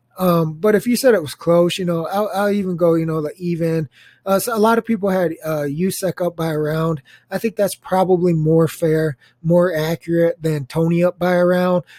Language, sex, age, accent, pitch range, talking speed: English, male, 20-39, American, 160-200 Hz, 215 wpm